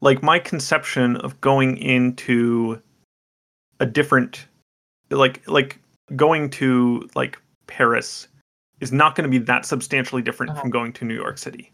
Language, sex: English, male